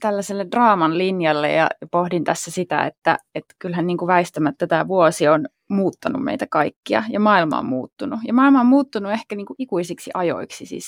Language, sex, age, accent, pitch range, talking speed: Finnish, female, 20-39, native, 170-220 Hz, 180 wpm